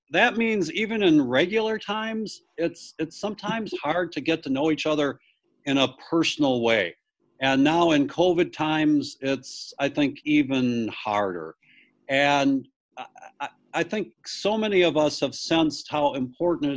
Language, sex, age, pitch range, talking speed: English, male, 60-79, 135-215 Hz, 150 wpm